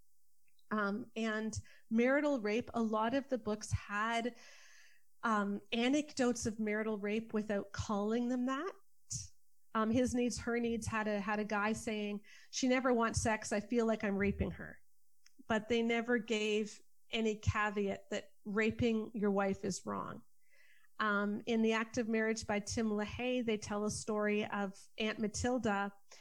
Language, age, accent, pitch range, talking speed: English, 40-59, American, 210-240 Hz, 155 wpm